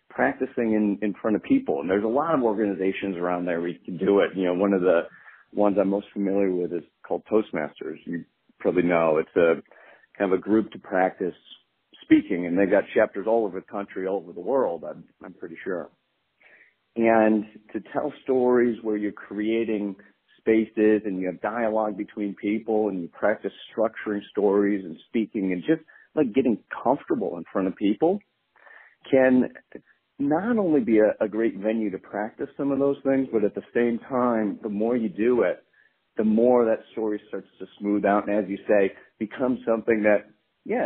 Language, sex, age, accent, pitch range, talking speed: English, male, 50-69, American, 100-115 Hz, 190 wpm